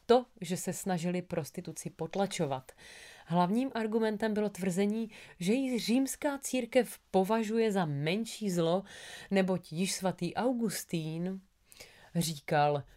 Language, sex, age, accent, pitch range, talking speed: Czech, female, 30-49, native, 165-205 Hz, 105 wpm